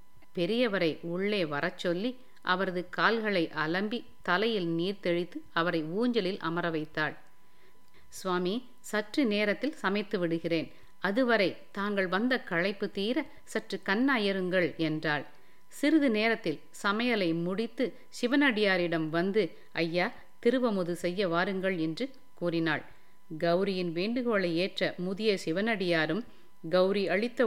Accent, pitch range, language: native, 170-220 Hz, Tamil